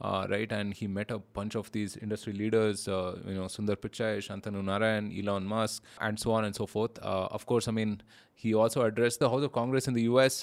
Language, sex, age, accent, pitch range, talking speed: English, male, 20-39, Indian, 105-125 Hz, 235 wpm